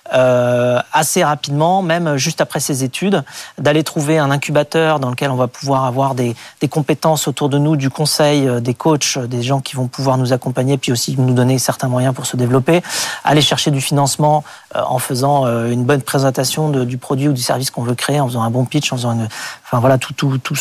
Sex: male